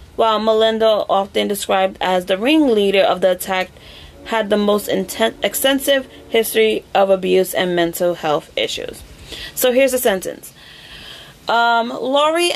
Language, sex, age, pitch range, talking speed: English, female, 30-49, 200-235 Hz, 135 wpm